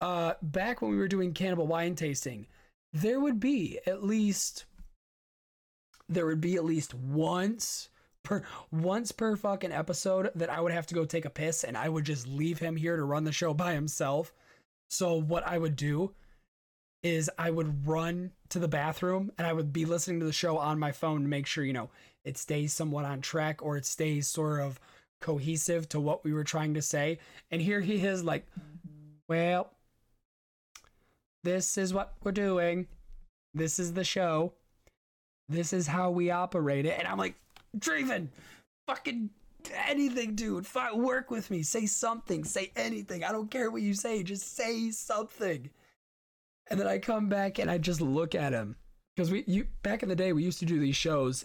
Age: 20-39